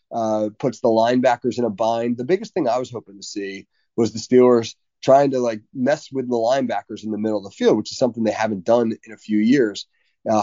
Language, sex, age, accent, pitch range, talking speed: English, male, 30-49, American, 110-160 Hz, 240 wpm